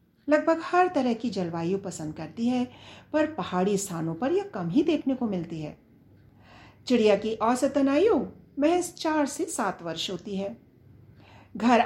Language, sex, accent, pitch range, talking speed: Hindi, female, native, 175-265 Hz, 155 wpm